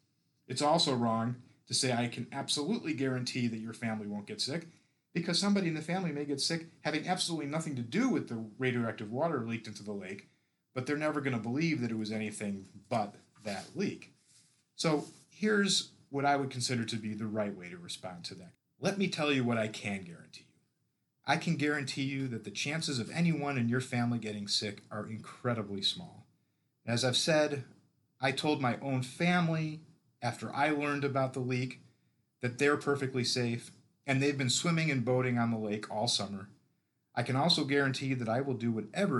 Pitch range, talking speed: 115-150 Hz, 195 wpm